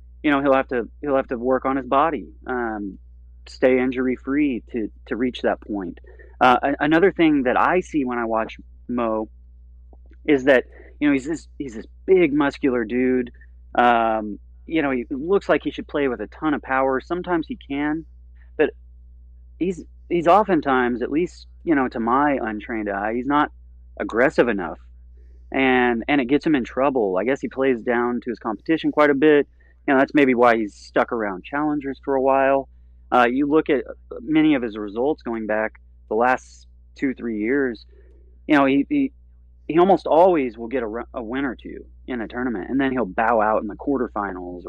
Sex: male